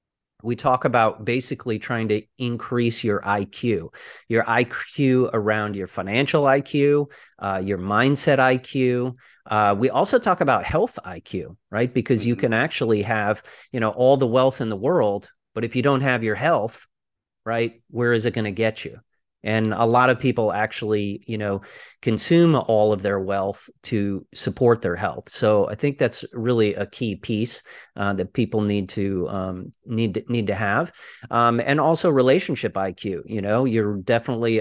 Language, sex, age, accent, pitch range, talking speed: English, male, 30-49, American, 105-130 Hz, 175 wpm